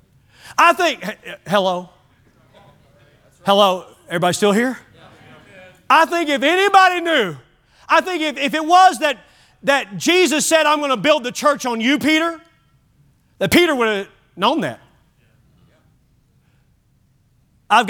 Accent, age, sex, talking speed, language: American, 40-59, male, 125 wpm, English